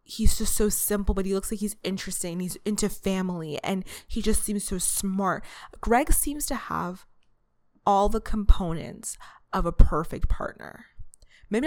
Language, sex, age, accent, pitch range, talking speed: English, female, 20-39, American, 170-205 Hz, 160 wpm